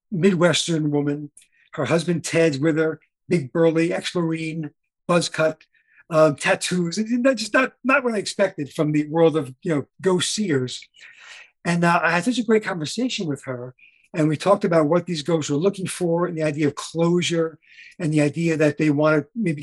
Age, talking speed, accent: 50-69, 190 wpm, American